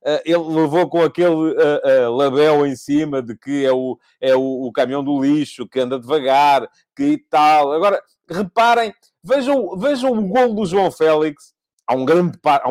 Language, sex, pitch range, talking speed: English, male, 140-195 Hz, 150 wpm